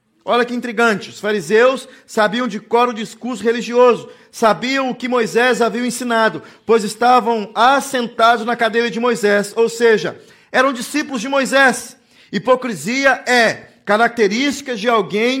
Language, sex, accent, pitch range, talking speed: Portuguese, male, Brazilian, 225-255 Hz, 135 wpm